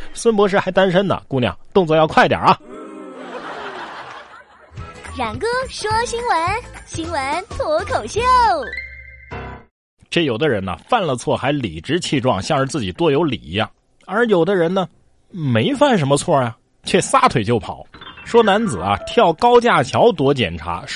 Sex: male